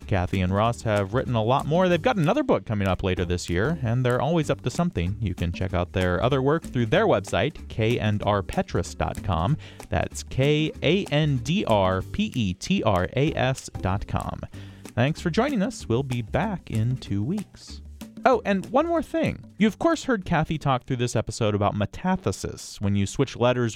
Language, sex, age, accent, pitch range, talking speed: English, male, 30-49, American, 100-155 Hz, 165 wpm